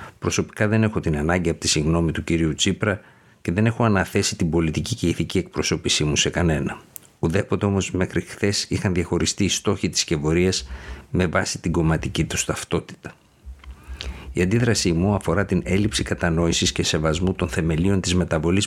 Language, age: Greek, 50-69